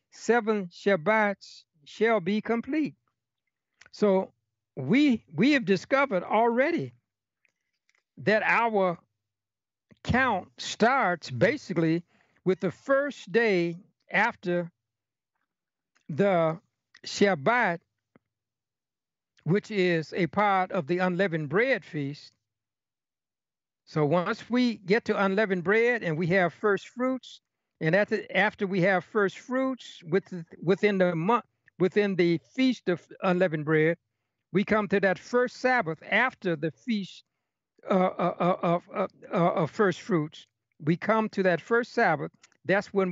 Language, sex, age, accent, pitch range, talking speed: English, male, 60-79, American, 165-215 Hz, 115 wpm